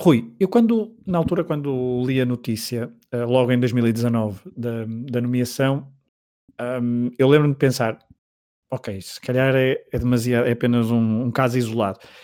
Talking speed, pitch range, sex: 150 wpm, 115-125 Hz, male